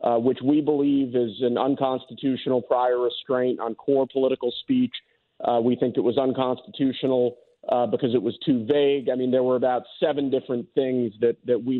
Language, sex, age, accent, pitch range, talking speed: English, male, 40-59, American, 125-145 Hz, 185 wpm